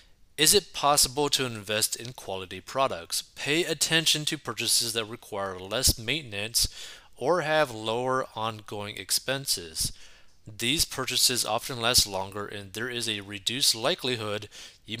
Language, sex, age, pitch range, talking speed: English, male, 30-49, 110-140 Hz, 130 wpm